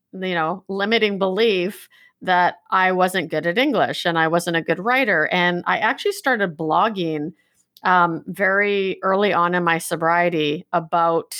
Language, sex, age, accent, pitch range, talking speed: English, female, 30-49, American, 170-200 Hz, 155 wpm